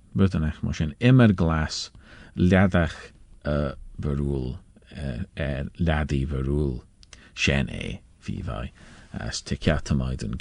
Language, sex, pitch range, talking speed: English, male, 80-105 Hz, 120 wpm